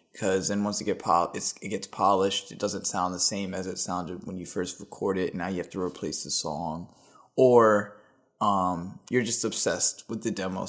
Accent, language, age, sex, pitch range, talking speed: American, English, 20-39, male, 100-125 Hz, 215 wpm